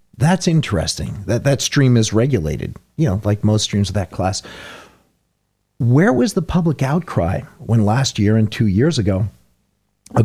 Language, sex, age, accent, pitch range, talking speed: English, male, 40-59, American, 100-135 Hz, 165 wpm